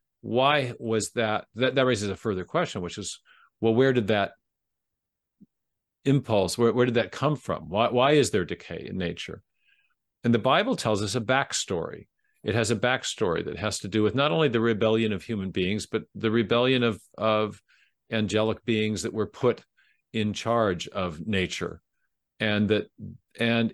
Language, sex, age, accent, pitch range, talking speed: English, male, 50-69, American, 105-125 Hz, 175 wpm